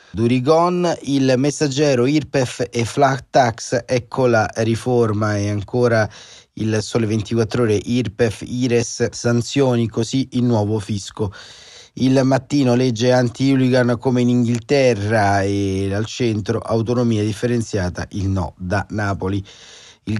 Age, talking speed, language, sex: 30-49, 120 wpm, Italian, male